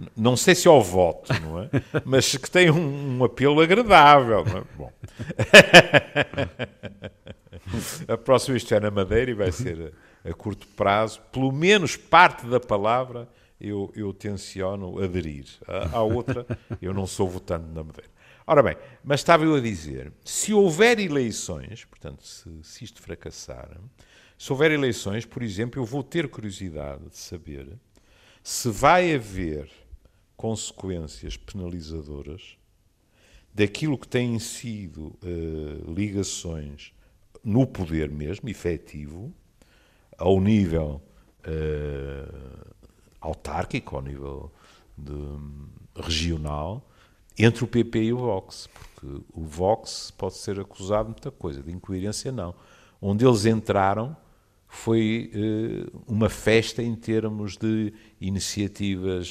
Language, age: Portuguese, 50-69